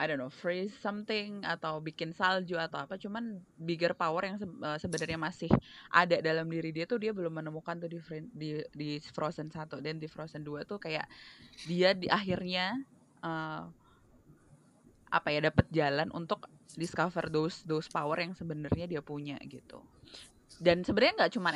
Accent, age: native, 20-39